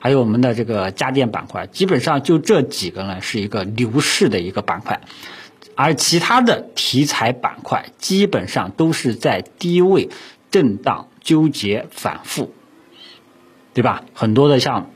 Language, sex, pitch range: Chinese, male, 105-140 Hz